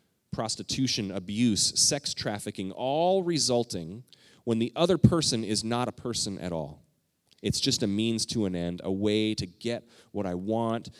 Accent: American